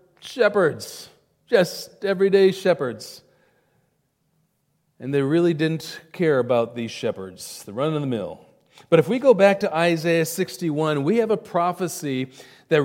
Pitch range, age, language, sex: 155-190 Hz, 40-59, English, male